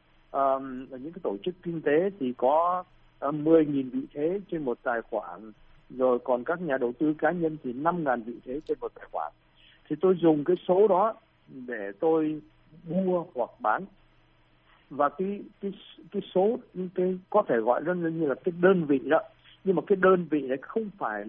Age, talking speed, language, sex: 60-79, 190 wpm, Vietnamese, male